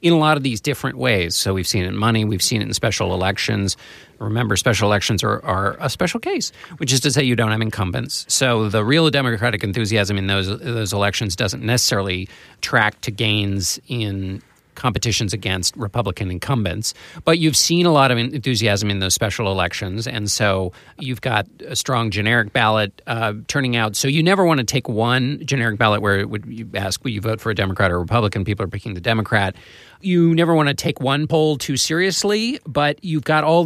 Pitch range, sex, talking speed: 105-140 Hz, male, 205 wpm